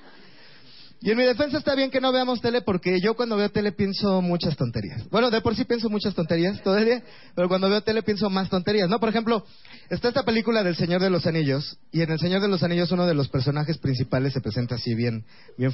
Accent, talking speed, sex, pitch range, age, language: Mexican, 235 wpm, male, 160-245 Hz, 30-49, Spanish